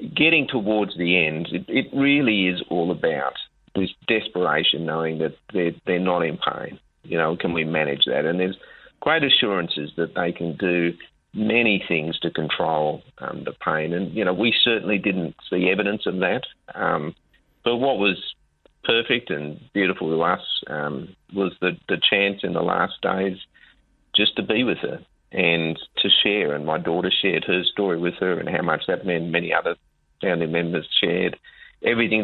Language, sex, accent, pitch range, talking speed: English, male, Australian, 80-100 Hz, 175 wpm